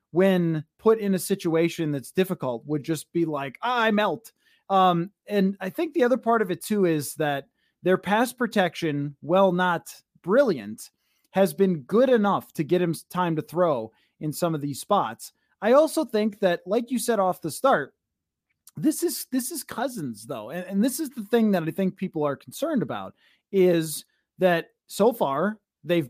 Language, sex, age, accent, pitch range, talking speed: English, male, 20-39, American, 160-210 Hz, 185 wpm